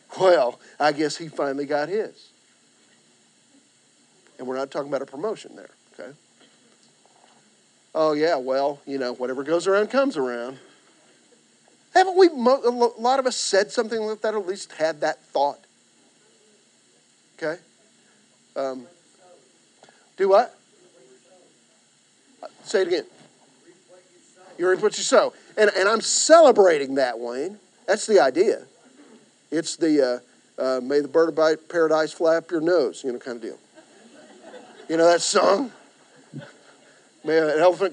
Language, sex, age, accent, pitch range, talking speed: English, male, 50-69, American, 165-260 Hz, 135 wpm